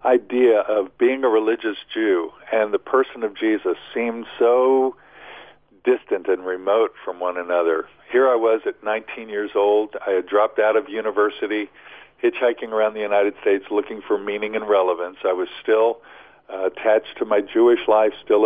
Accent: American